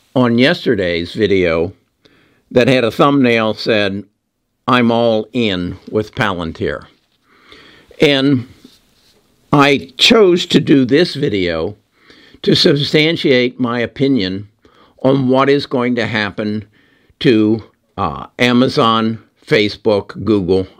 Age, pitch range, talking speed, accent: 60-79, 110-140 Hz, 100 wpm, American